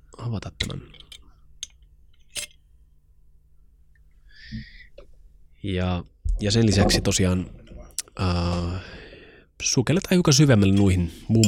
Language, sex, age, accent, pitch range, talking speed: Finnish, male, 30-49, native, 85-115 Hz, 70 wpm